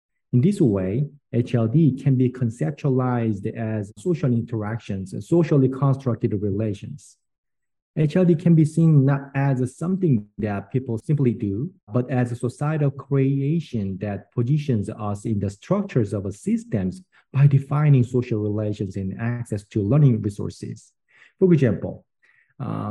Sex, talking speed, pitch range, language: male, 135 wpm, 105-140 Hz, English